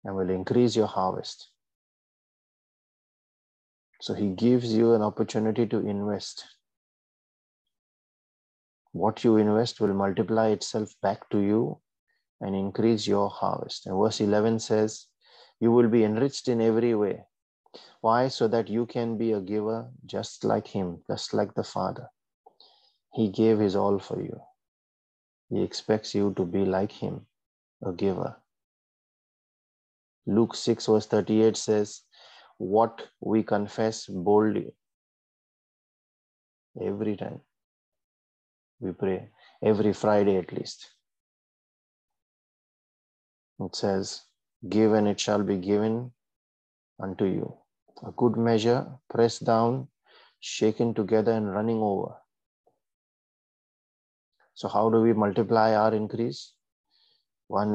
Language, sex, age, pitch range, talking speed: English, male, 30-49, 100-115 Hz, 115 wpm